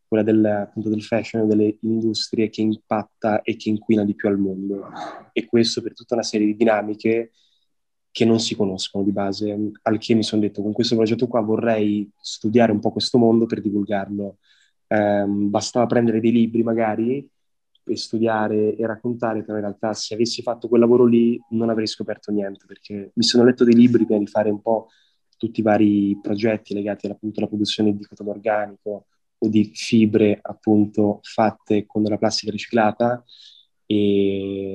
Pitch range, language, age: 105-115 Hz, Italian, 20-39